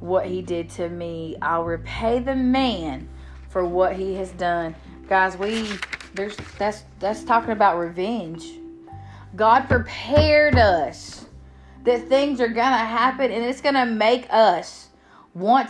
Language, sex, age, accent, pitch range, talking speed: English, female, 30-49, American, 185-260 Hz, 140 wpm